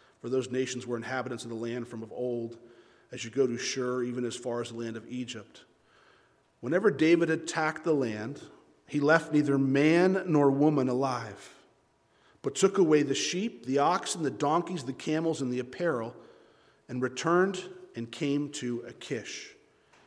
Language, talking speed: English, 165 wpm